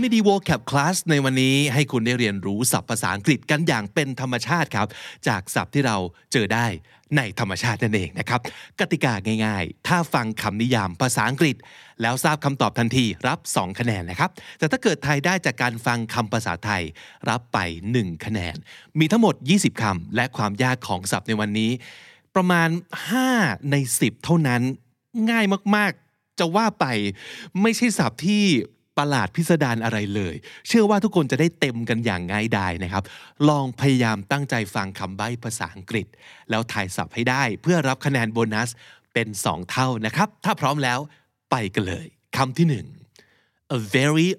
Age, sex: 20-39, male